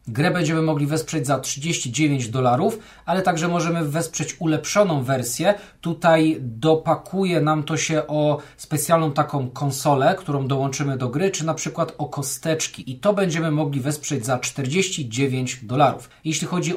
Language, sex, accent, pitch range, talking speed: Polish, male, native, 140-170 Hz, 145 wpm